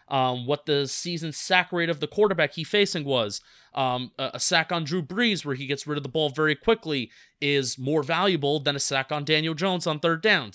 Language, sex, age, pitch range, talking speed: English, male, 30-49, 130-170 Hz, 230 wpm